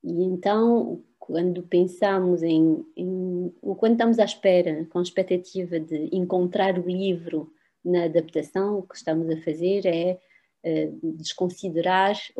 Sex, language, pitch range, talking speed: female, Portuguese, 170-200 Hz, 135 wpm